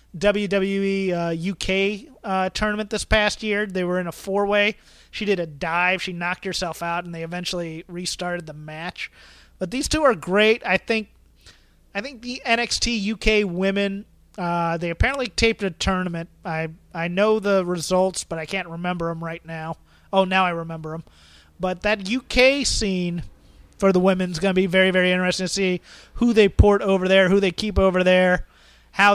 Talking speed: 185 wpm